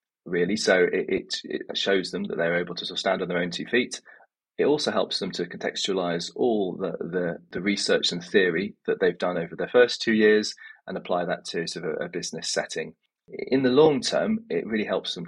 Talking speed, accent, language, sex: 220 wpm, British, English, male